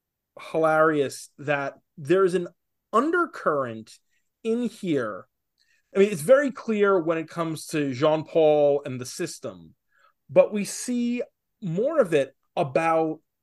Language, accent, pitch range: English, American, 150-195 Hz